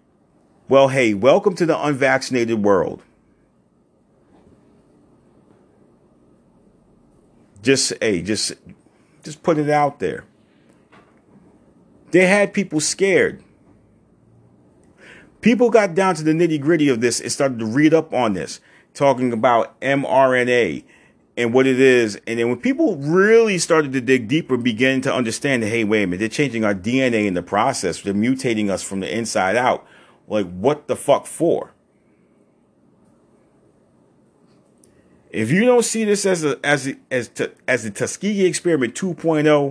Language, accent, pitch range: English, American, 110-160 Hz